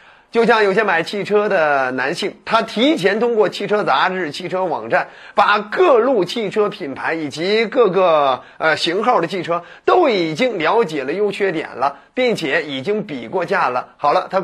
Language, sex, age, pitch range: Chinese, male, 30-49, 185-250 Hz